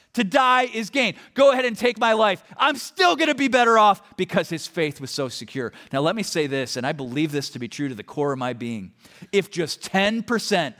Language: English